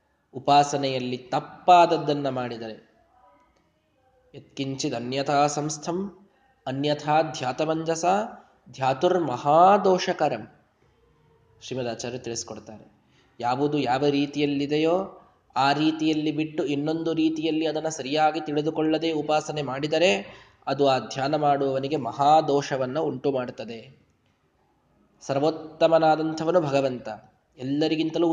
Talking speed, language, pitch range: 70 wpm, Kannada, 135-165 Hz